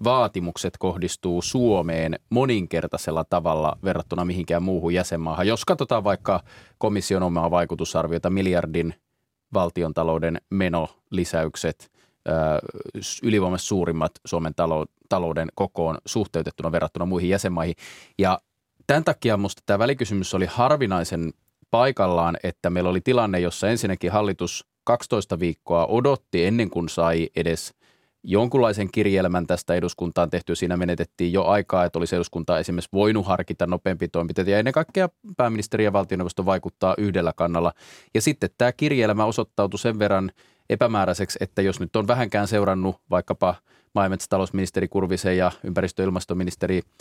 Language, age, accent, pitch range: Finnish, 30-49, native, 85-105 Hz